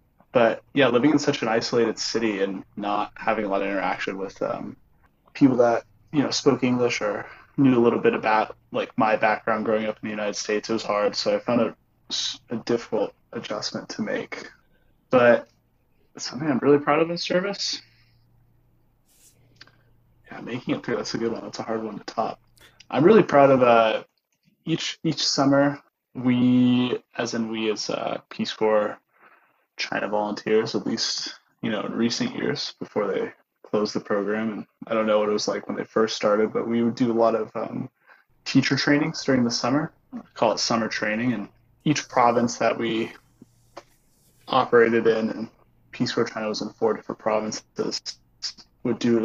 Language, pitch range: English, 110-130 Hz